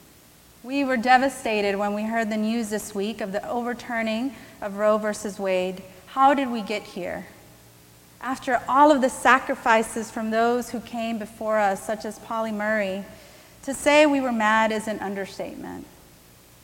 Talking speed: 160 wpm